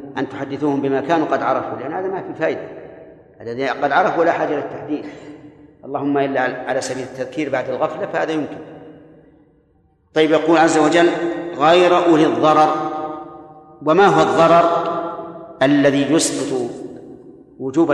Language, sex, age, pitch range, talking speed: Arabic, male, 50-69, 145-165 Hz, 130 wpm